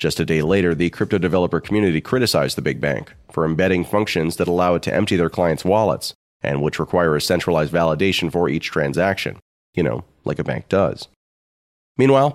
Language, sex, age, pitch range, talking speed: English, male, 30-49, 75-95 Hz, 190 wpm